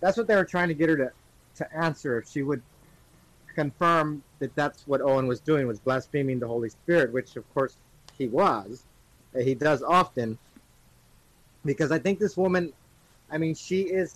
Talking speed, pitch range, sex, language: 185 wpm, 125-155 Hz, male, English